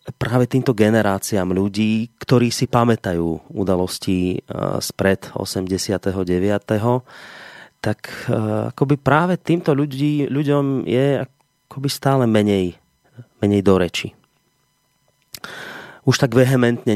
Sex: male